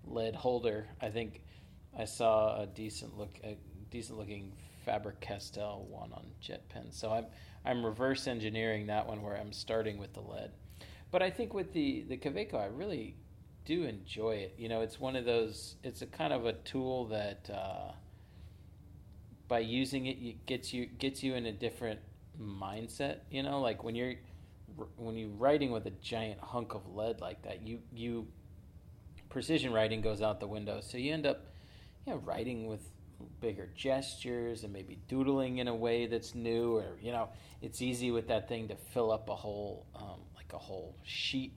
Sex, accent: male, American